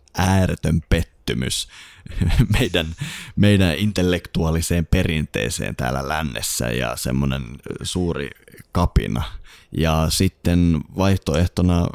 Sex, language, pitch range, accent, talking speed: male, Finnish, 75-95 Hz, native, 75 wpm